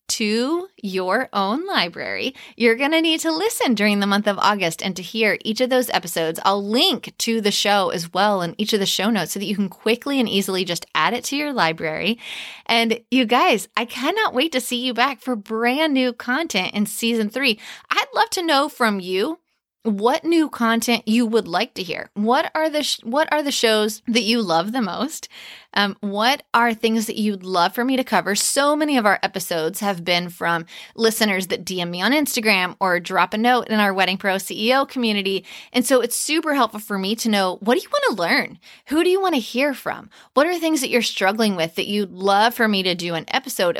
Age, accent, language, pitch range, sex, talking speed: 20-39, American, English, 200-255 Hz, female, 225 wpm